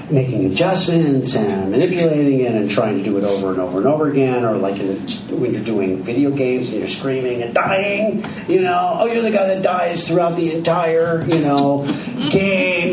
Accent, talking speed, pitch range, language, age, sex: American, 205 wpm, 105-170 Hz, English, 40-59, male